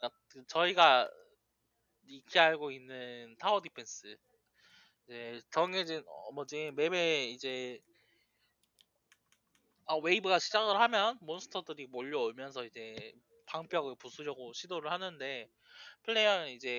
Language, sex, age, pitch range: Korean, male, 20-39, 130-180 Hz